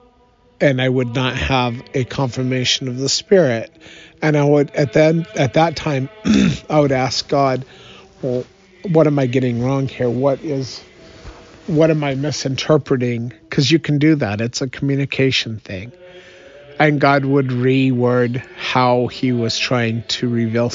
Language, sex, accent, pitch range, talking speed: English, male, American, 115-140 Hz, 155 wpm